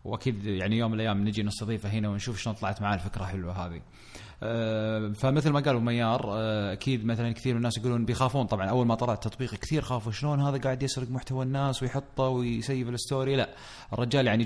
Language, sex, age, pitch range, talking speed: Arabic, male, 30-49, 105-120 Hz, 185 wpm